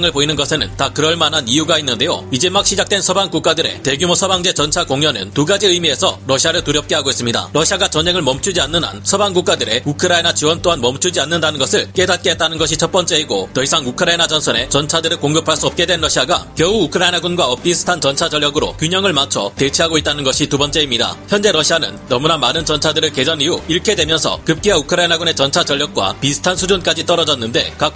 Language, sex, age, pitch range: Korean, male, 30-49, 145-180 Hz